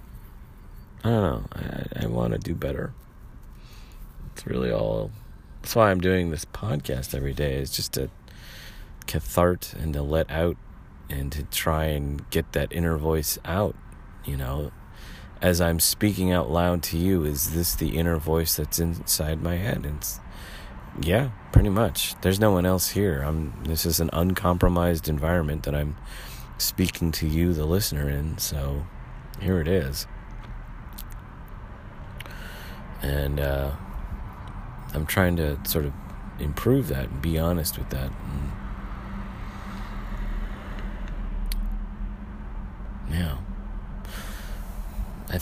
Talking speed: 130 wpm